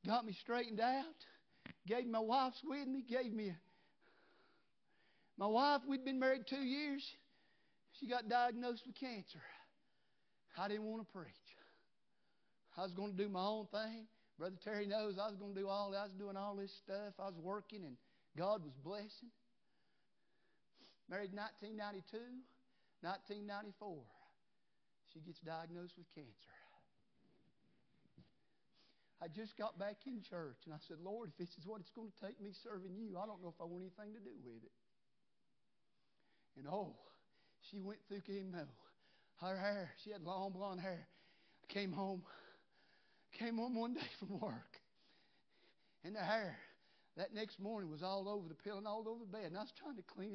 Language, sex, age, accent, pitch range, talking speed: English, male, 50-69, American, 185-220 Hz, 170 wpm